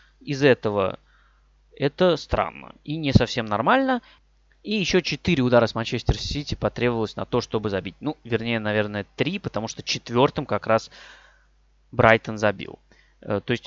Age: 20-39